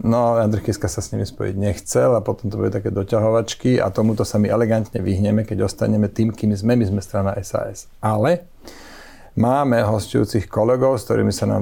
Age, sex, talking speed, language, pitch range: 40-59, male, 180 wpm, Slovak, 105-120 Hz